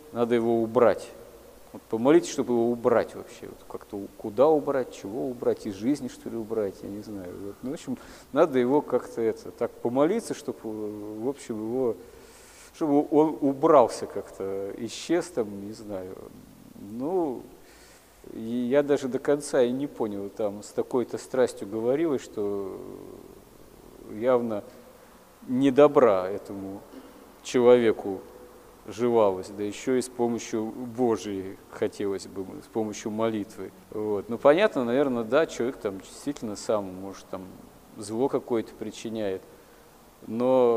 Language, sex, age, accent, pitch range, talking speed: Russian, male, 40-59, native, 105-130 Hz, 135 wpm